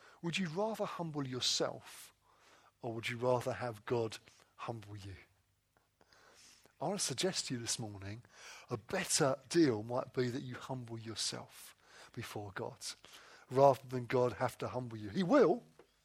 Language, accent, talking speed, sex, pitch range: English, British, 155 wpm, male, 125-210 Hz